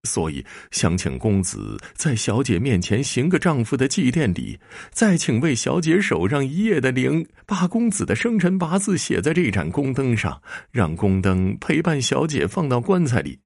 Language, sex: Chinese, male